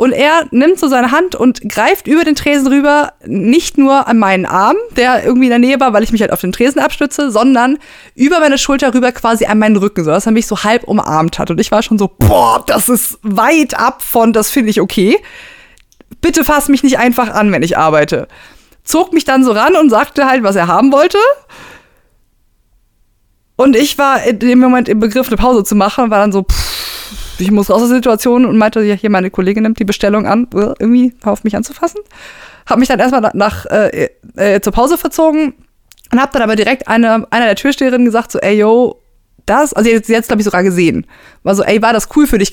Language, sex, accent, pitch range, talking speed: German, female, German, 210-275 Hz, 220 wpm